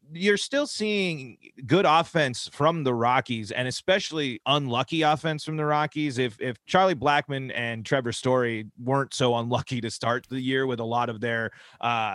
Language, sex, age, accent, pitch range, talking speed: English, male, 30-49, American, 115-150 Hz, 175 wpm